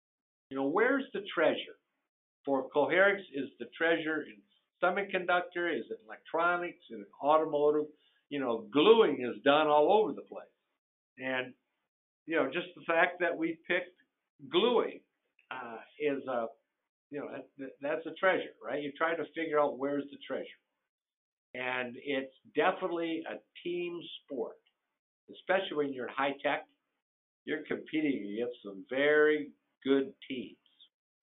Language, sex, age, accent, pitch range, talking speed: English, male, 60-79, American, 140-190 Hz, 140 wpm